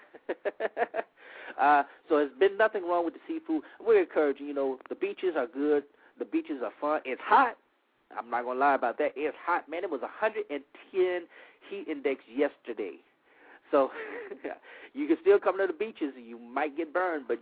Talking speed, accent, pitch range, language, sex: 185 wpm, American, 125-185 Hz, English, male